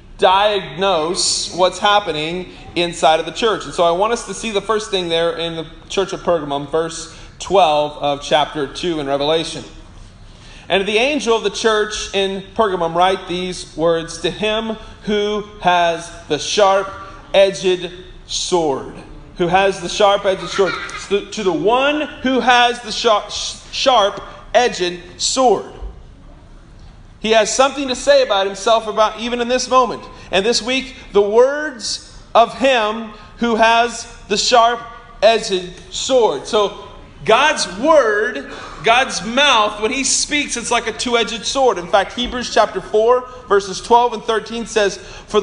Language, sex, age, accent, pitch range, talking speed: English, male, 30-49, American, 185-245 Hz, 150 wpm